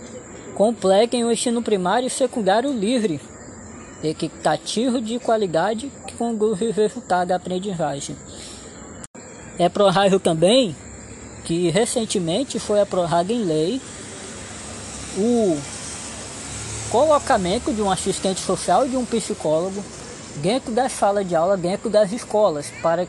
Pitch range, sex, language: 175-235 Hz, female, Portuguese